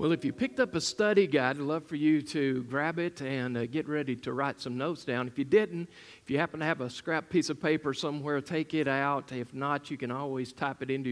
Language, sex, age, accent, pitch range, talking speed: English, male, 50-69, American, 125-155 Hz, 265 wpm